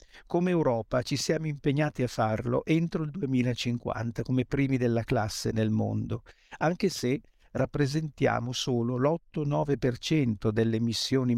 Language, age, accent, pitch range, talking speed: Italian, 50-69, native, 115-150 Hz, 120 wpm